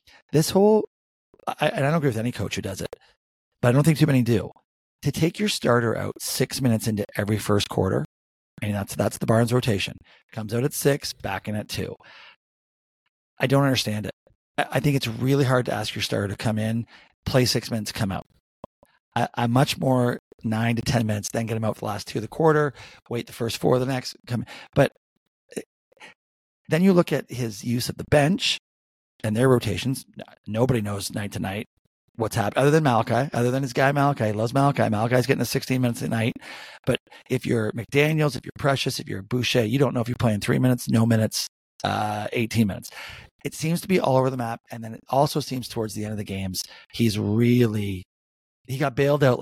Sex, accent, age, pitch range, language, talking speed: male, American, 40-59, 105-135 Hz, English, 215 wpm